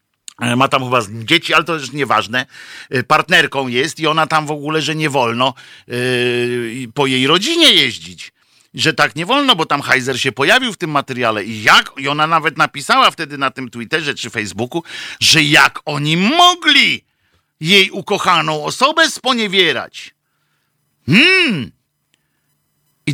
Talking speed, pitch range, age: 150 wpm, 130-185 Hz, 50-69